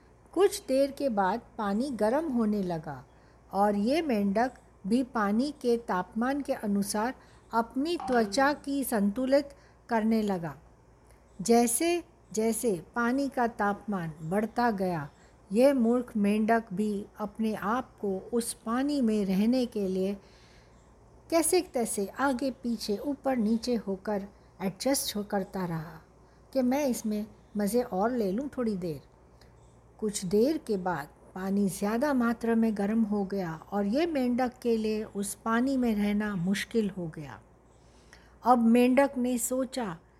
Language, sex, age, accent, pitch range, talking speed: Hindi, female, 60-79, native, 200-260 Hz, 135 wpm